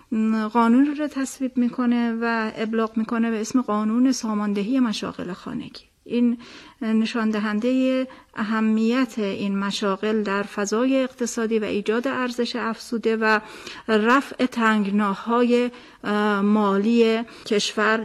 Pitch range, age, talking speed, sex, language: 220-255 Hz, 40-59, 100 wpm, female, Persian